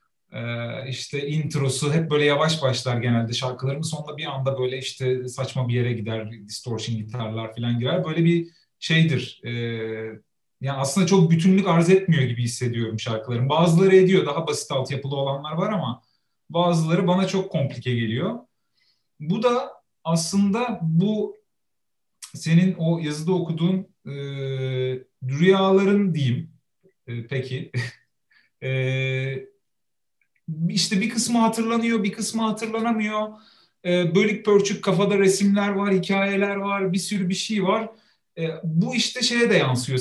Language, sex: Turkish, male